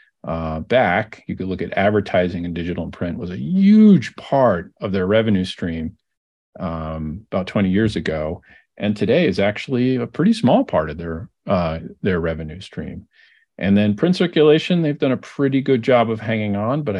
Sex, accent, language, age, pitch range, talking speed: male, American, English, 40-59, 90-110 Hz, 185 wpm